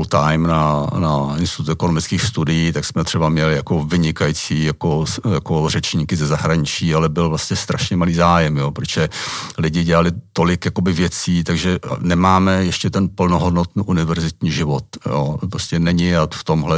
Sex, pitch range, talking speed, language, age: male, 80-95 Hz, 155 wpm, Czech, 50-69